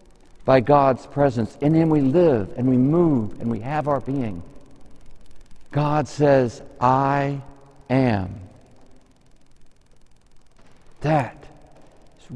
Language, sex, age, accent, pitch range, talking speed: English, male, 60-79, American, 115-150 Hz, 100 wpm